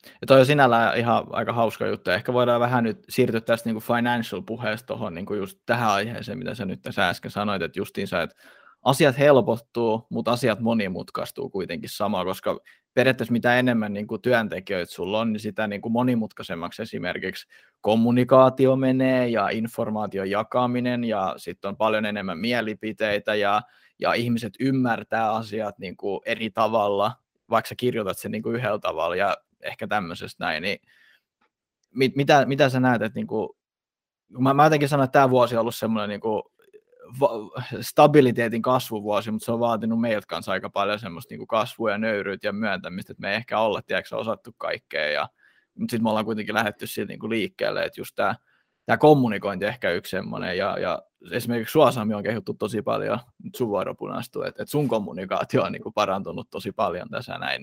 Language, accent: Finnish, native